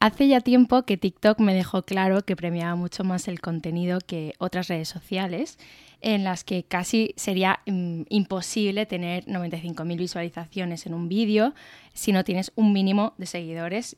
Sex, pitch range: female, 175-205 Hz